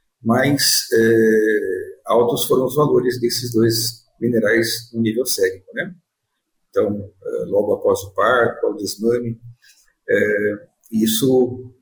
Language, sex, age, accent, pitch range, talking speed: Portuguese, male, 50-69, Brazilian, 115-155 Hz, 115 wpm